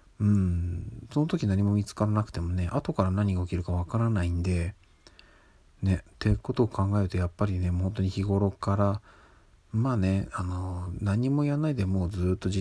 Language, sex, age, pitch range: Japanese, male, 40-59, 90-105 Hz